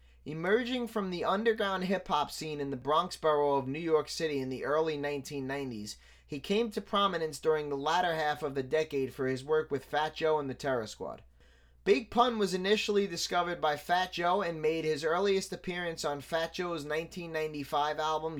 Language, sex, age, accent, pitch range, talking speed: English, male, 20-39, American, 145-185 Hz, 185 wpm